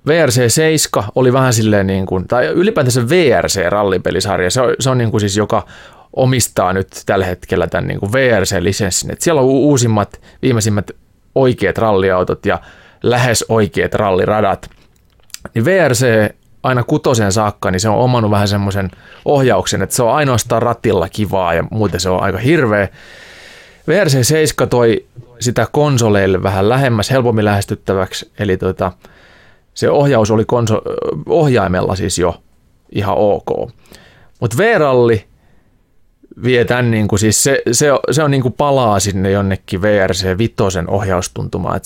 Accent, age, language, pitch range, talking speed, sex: native, 20-39, Finnish, 95-125 Hz, 130 wpm, male